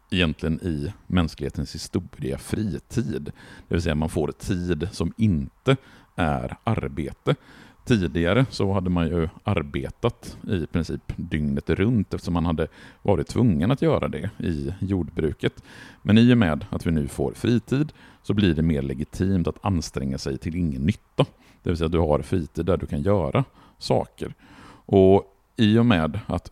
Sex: male